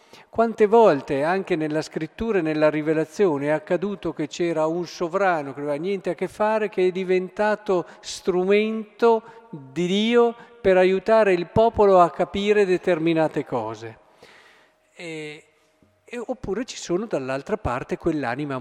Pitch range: 150-205 Hz